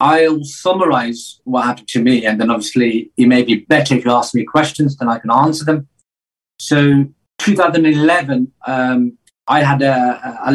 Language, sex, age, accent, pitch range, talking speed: English, male, 40-59, British, 120-150 Hz, 170 wpm